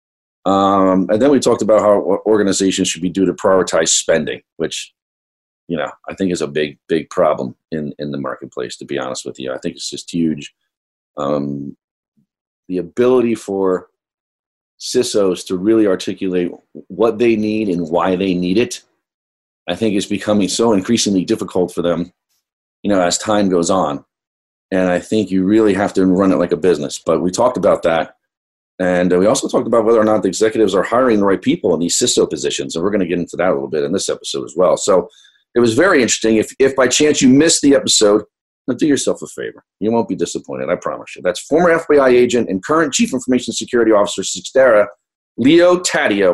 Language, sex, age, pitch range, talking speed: English, male, 40-59, 90-120 Hz, 205 wpm